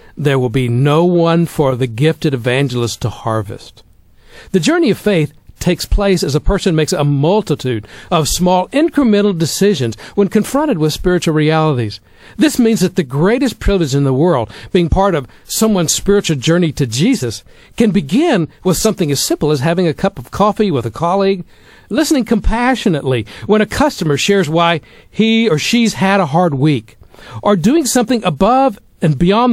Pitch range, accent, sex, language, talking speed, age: 135-205 Hz, American, male, English, 170 wpm, 60-79